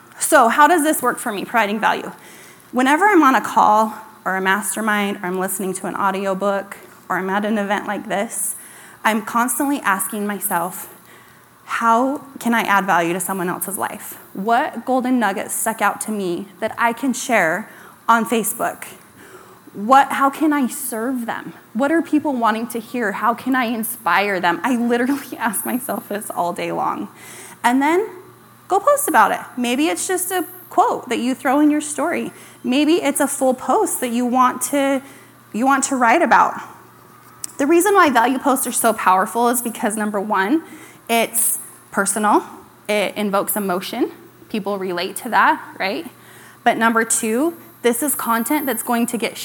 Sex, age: female, 20-39